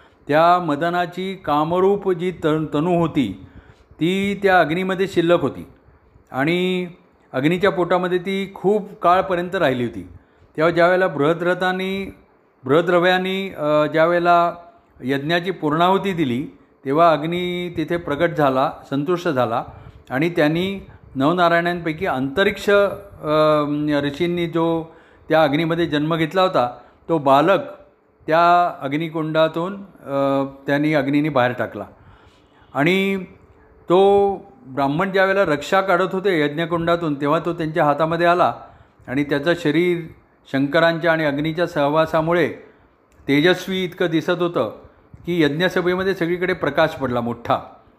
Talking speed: 105 wpm